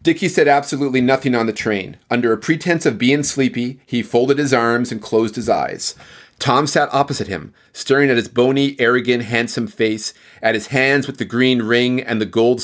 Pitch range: 120-140 Hz